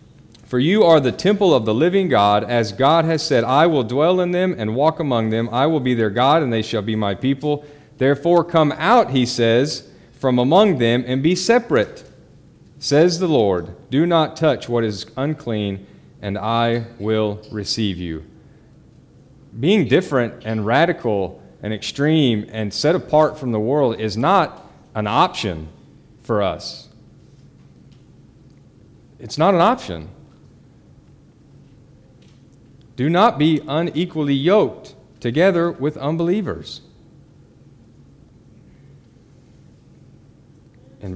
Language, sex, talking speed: English, male, 130 wpm